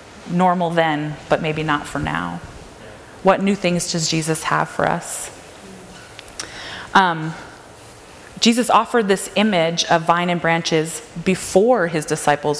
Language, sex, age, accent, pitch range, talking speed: English, female, 20-39, American, 155-180 Hz, 130 wpm